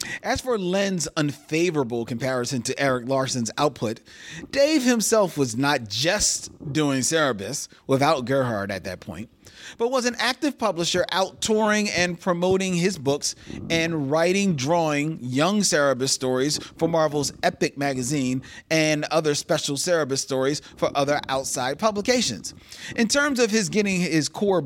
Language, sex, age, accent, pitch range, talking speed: English, male, 40-59, American, 140-200 Hz, 140 wpm